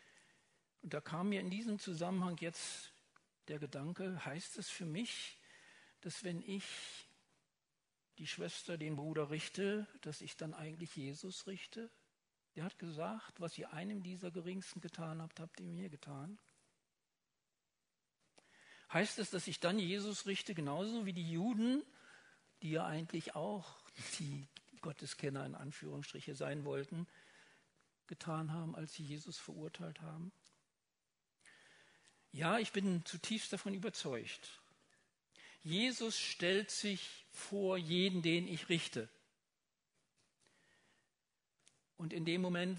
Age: 60-79